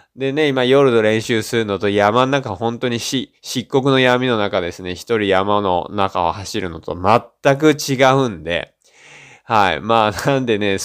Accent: native